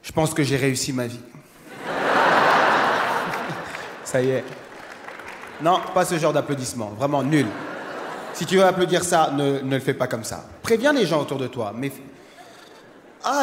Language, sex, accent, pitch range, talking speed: English, male, French, 150-220 Hz, 165 wpm